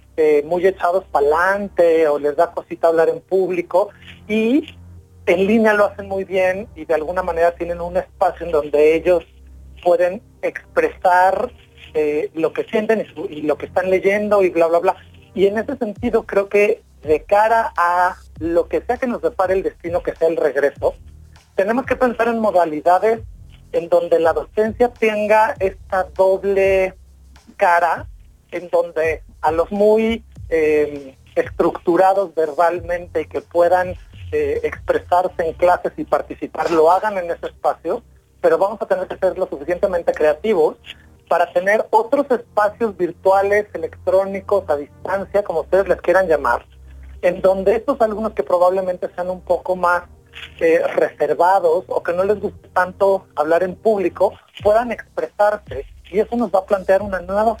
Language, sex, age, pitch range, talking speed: Spanish, male, 40-59, 170-210 Hz, 160 wpm